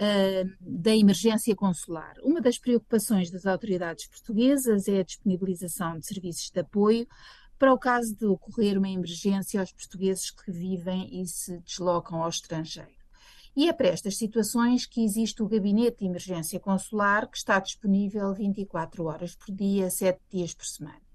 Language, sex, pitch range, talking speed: Portuguese, female, 180-220 Hz, 155 wpm